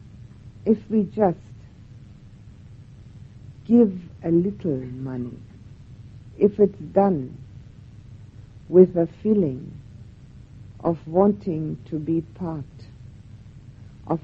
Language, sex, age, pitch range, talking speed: English, female, 60-79, 115-160 Hz, 80 wpm